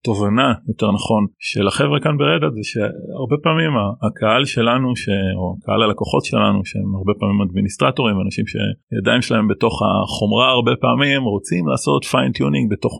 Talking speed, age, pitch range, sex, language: 150 wpm, 30-49, 100-130 Hz, male, Hebrew